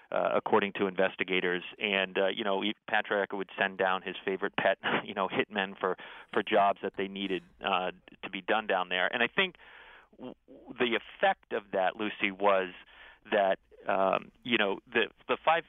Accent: American